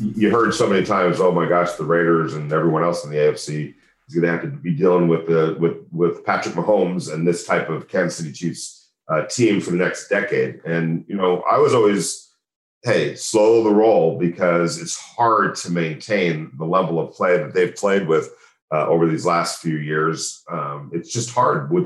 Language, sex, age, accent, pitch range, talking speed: English, male, 40-59, American, 80-105 Hz, 210 wpm